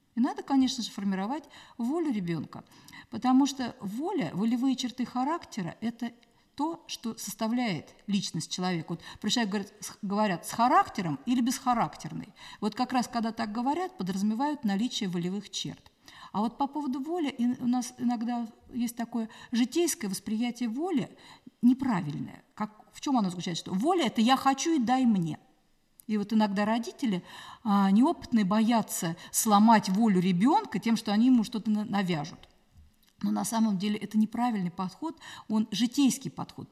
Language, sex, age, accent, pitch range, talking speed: Russian, female, 50-69, native, 200-250 Hz, 150 wpm